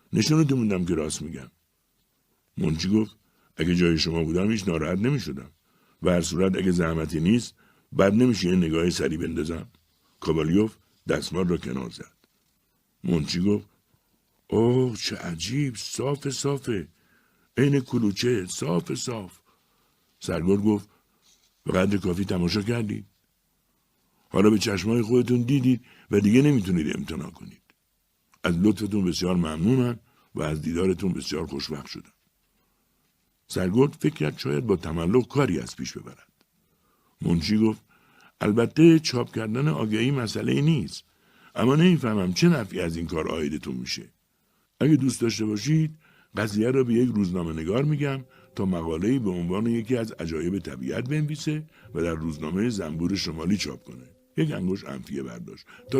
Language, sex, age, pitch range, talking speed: Persian, male, 60-79, 90-125 Hz, 135 wpm